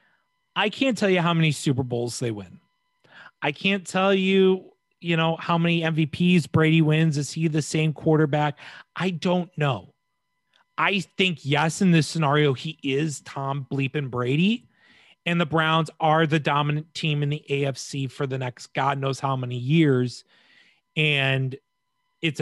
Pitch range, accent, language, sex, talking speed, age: 145-195 Hz, American, English, male, 165 wpm, 30-49